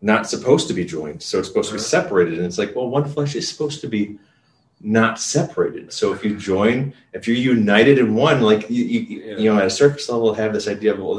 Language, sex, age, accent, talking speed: English, male, 30-49, American, 245 wpm